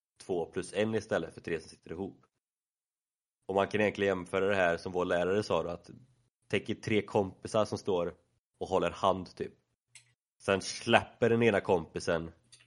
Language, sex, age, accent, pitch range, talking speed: Swedish, male, 30-49, native, 90-120 Hz, 170 wpm